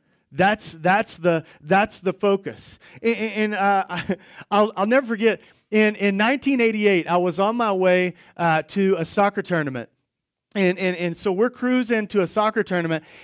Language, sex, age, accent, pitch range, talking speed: English, male, 40-59, American, 175-220 Hz, 165 wpm